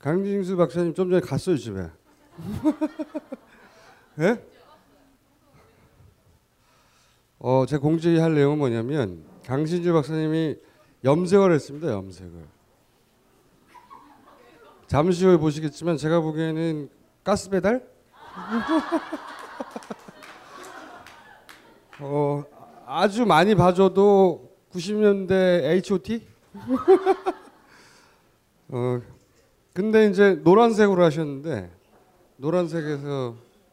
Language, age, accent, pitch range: Korean, 30-49, native, 125-185 Hz